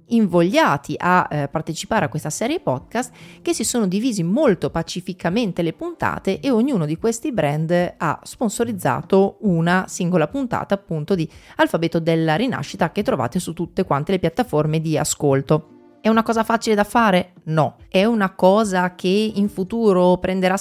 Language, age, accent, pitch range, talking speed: Italian, 30-49, native, 155-210 Hz, 155 wpm